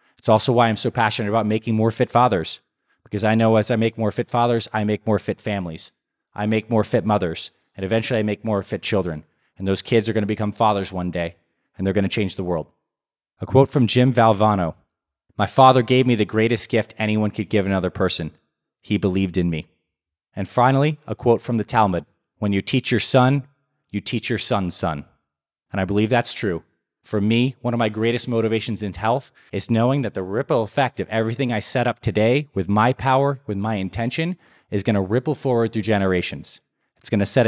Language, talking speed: English, 215 wpm